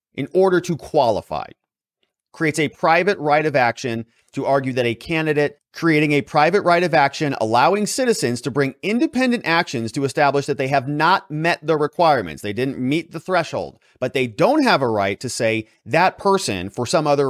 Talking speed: 185 wpm